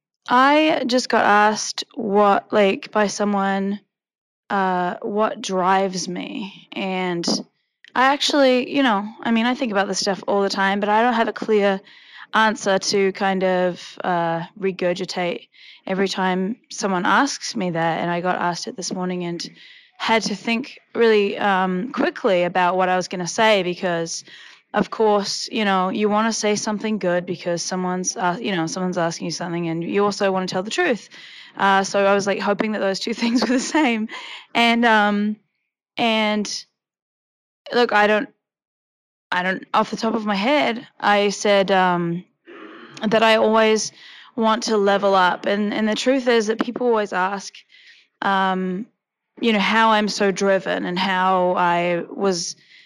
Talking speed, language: 170 wpm, English